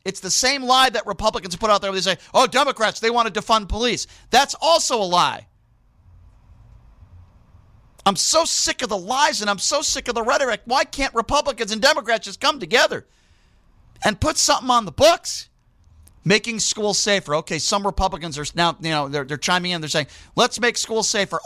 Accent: American